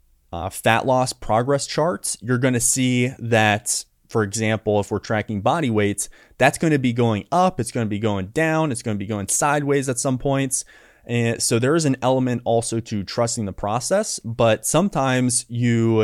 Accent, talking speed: American, 195 wpm